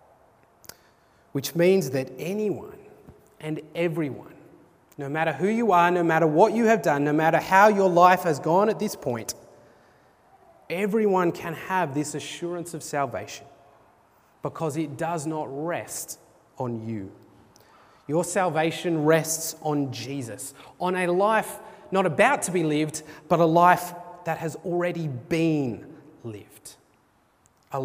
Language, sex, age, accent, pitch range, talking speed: English, male, 30-49, Australian, 135-175 Hz, 135 wpm